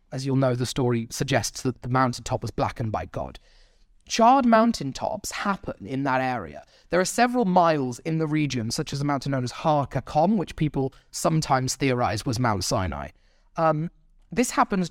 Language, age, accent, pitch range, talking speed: English, 30-49, British, 130-185 Hz, 175 wpm